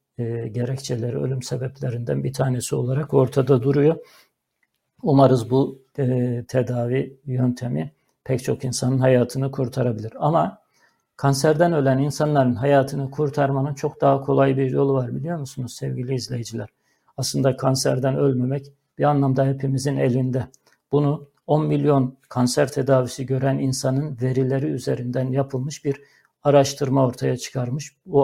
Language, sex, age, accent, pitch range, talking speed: Turkish, male, 60-79, native, 130-145 Hz, 120 wpm